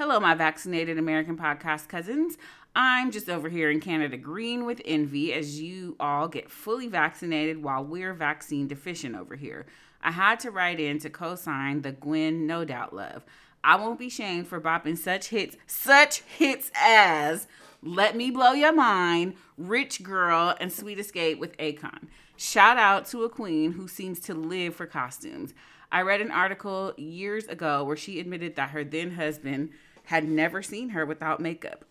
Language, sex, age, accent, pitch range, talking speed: English, female, 30-49, American, 150-190 Hz, 170 wpm